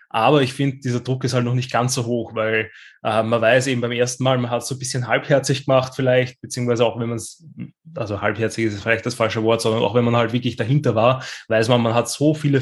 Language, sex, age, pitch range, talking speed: German, male, 20-39, 115-130 Hz, 255 wpm